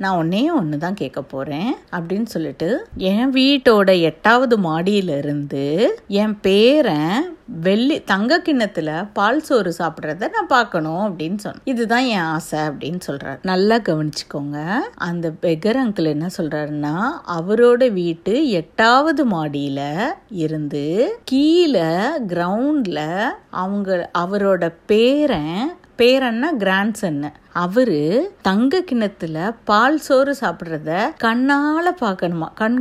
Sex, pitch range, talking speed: female, 175-245 Hz, 105 wpm